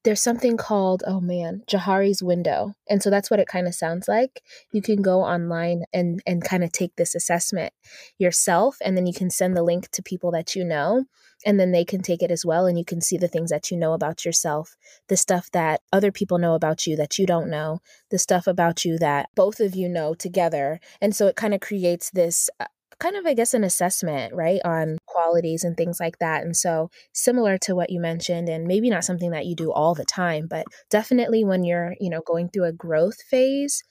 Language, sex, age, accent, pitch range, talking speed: English, female, 20-39, American, 170-200 Hz, 225 wpm